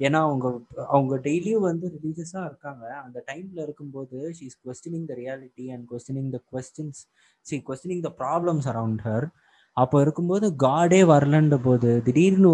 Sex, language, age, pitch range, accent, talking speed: male, Tamil, 20-39, 120-150 Hz, native, 140 wpm